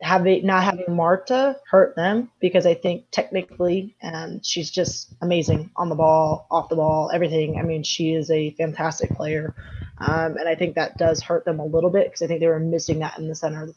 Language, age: English, 20-39